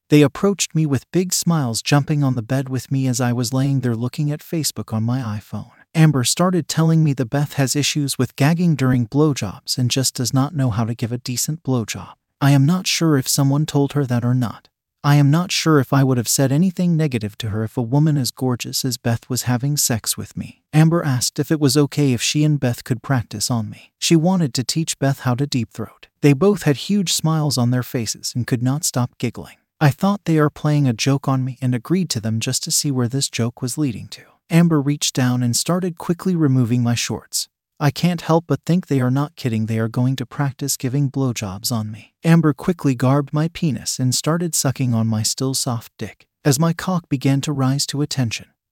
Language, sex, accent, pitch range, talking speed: English, male, American, 125-155 Hz, 230 wpm